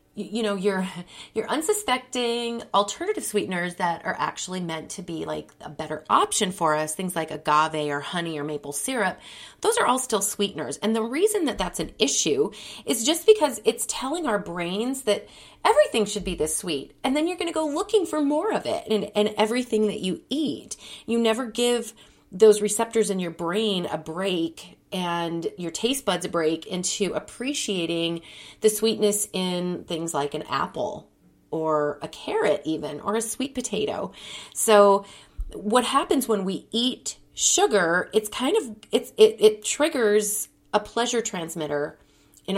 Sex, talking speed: female, 170 wpm